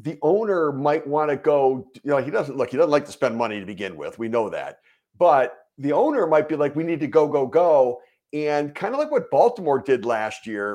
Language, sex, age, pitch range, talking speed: English, male, 50-69, 130-190 Hz, 245 wpm